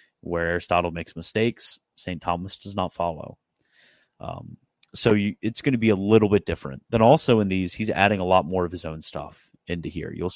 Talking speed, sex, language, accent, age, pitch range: 205 wpm, male, English, American, 30-49, 85-100 Hz